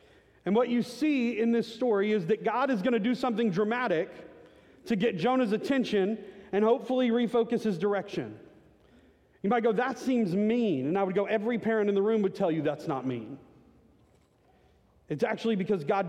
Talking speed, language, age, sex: 185 wpm, English, 40-59, male